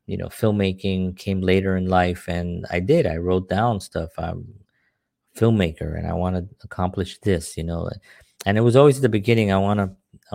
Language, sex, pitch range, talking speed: English, male, 90-110 Hz, 190 wpm